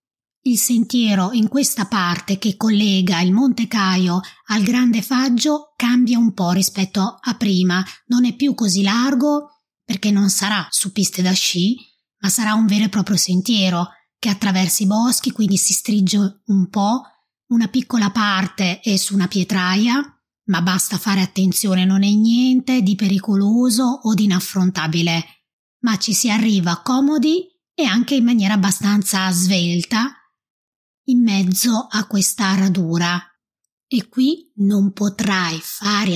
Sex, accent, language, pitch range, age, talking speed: female, native, Italian, 190-245 Hz, 20-39, 145 wpm